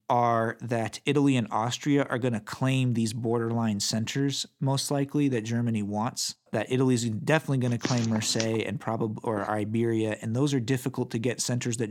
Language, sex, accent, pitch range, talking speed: English, male, American, 115-130 Hz, 185 wpm